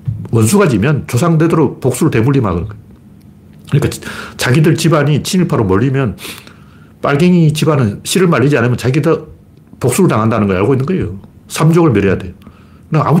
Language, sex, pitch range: Korean, male, 105-160 Hz